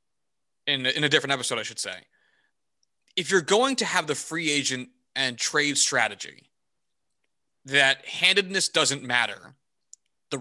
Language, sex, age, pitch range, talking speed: English, male, 30-49, 135-180 Hz, 140 wpm